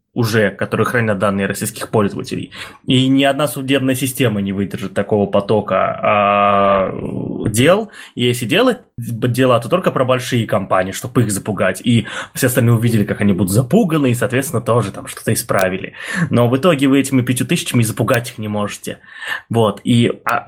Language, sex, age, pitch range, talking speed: Russian, male, 20-39, 110-140 Hz, 160 wpm